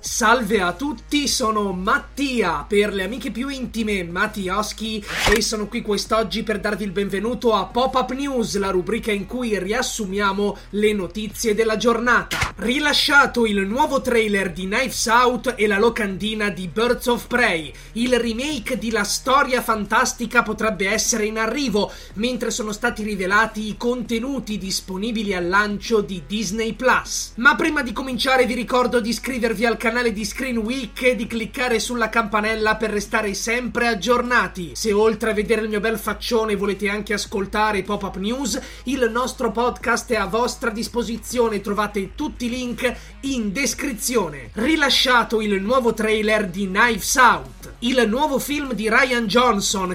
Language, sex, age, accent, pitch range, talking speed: Italian, male, 20-39, native, 210-245 Hz, 155 wpm